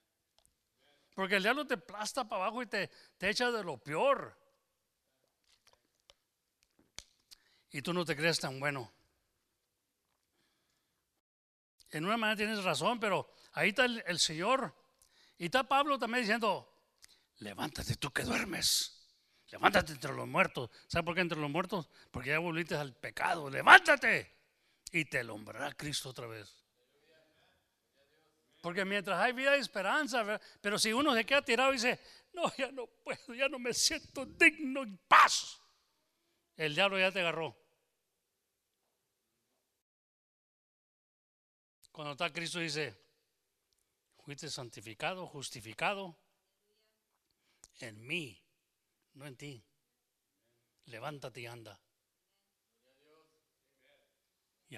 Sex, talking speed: male, 120 wpm